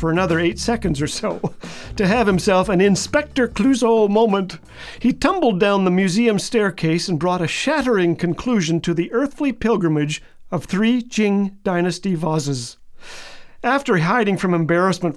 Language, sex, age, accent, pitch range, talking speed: English, male, 50-69, American, 175-235 Hz, 145 wpm